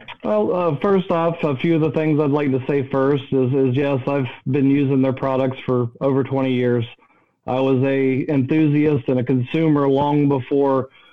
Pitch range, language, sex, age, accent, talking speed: 130-145 Hz, English, male, 40-59, American, 190 wpm